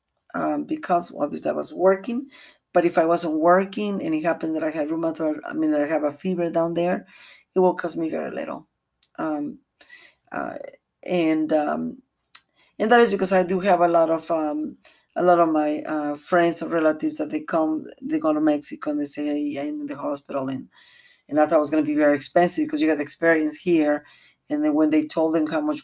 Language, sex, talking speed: English, female, 225 wpm